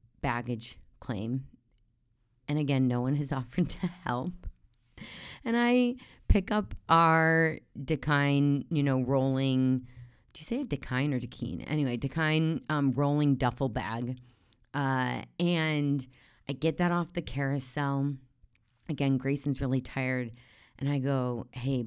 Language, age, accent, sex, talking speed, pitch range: English, 30-49, American, female, 125 wpm, 120-140 Hz